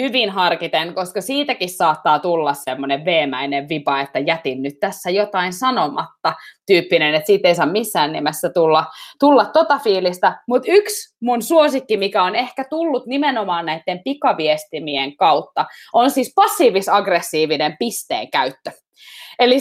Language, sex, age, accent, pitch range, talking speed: Finnish, female, 20-39, native, 175-280 Hz, 135 wpm